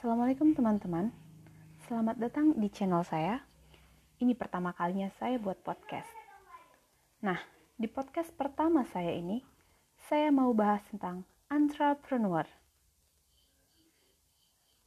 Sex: female